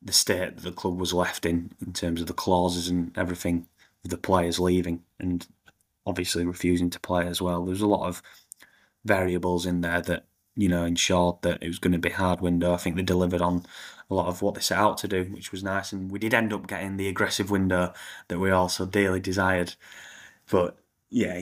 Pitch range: 90-95 Hz